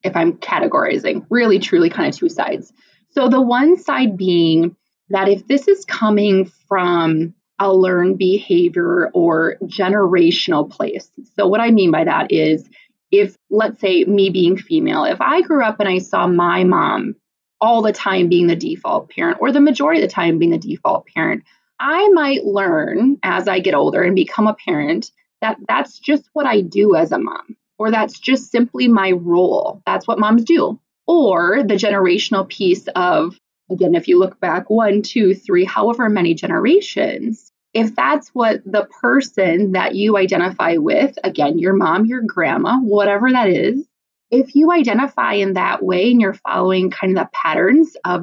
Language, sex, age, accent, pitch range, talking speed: English, female, 20-39, American, 190-300 Hz, 175 wpm